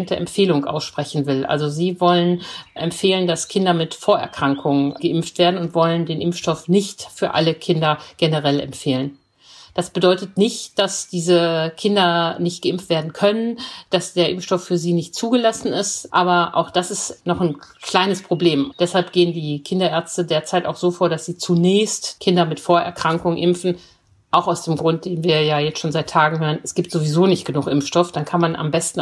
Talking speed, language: 180 wpm, German